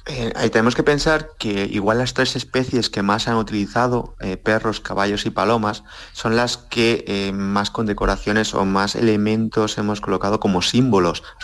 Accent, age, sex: Spanish, 30-49, male